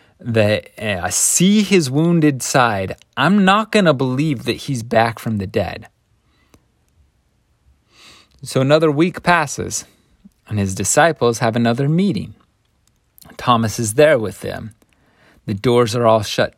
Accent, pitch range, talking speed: American, 100-135 Hz, 135 wpm